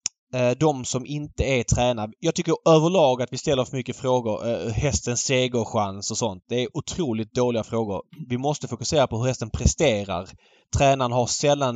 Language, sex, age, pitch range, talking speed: Swedish, male, 20-39, 120-145 Hz, 170 wpm